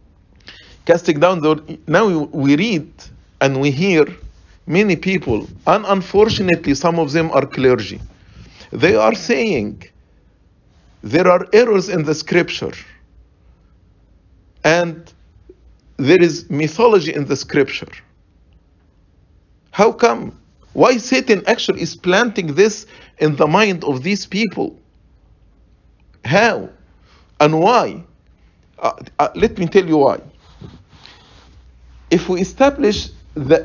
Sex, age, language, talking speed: male, 50-69, English, 110 wpm